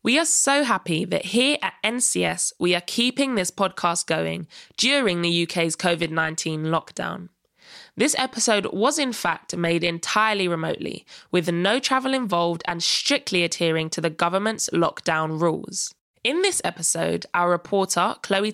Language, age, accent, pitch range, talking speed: English, 20-39, British, 170-215 Hz, 145 wpm